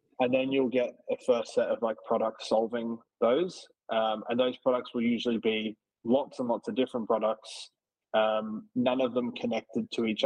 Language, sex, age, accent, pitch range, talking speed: English, male, 20-39, Australian, 110-130 Hz, 185 wpm